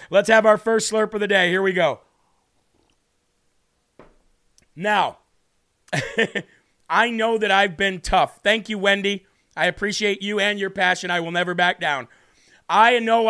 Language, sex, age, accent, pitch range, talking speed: English, male, 40-59, American, 185-215 Hz, 155 wpm